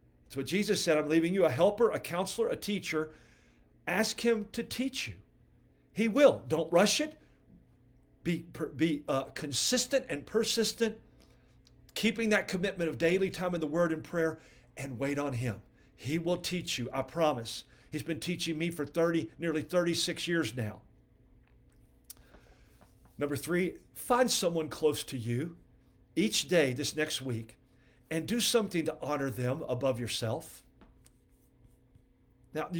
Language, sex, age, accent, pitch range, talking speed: English, male, 50-69, American, 135-200 Hz, 145 wpm